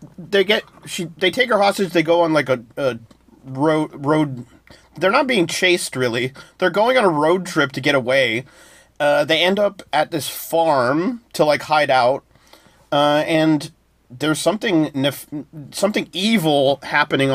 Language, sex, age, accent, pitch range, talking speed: English, male, 30-49, American, 130-175 Hz, 165 wpm